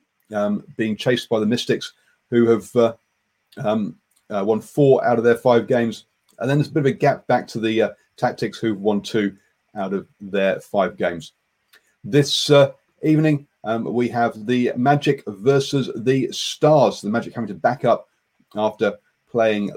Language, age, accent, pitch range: English, 40-59, British, 110-145 Hz